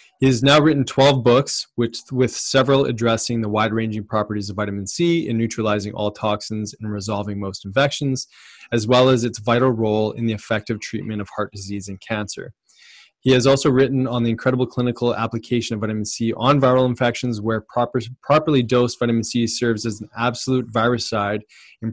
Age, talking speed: 20-39, 180 wpm